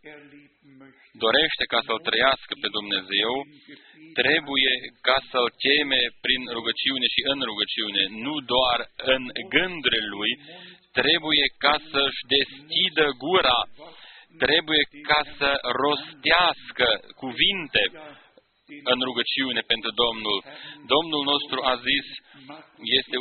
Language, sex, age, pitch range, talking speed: Romanian, male, 40-59, 130-150 Hz, 100 wpm